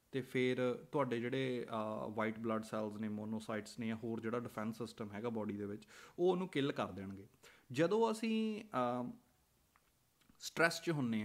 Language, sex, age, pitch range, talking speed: Punjabi, male, 20-39, 115-165 Hz, 155 wpm